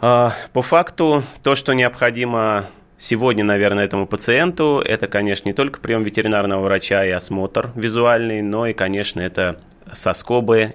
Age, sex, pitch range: 20-39, male, 90-110 Hz